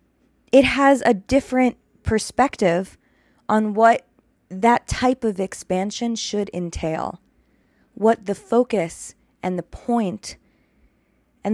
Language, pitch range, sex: English, 180-230 Hz, female